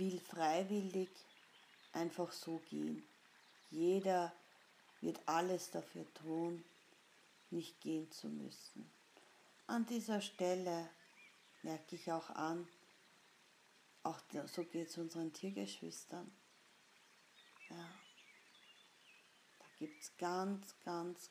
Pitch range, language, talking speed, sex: 165-185 Hz, German, 90 wpm, female